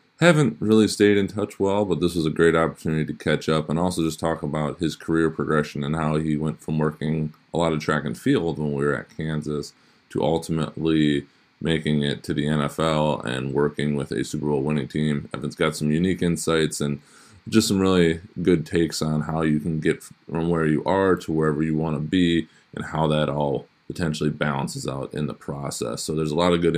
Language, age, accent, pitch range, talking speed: English, 20-39, American, 75-85 Hz, 215 wpm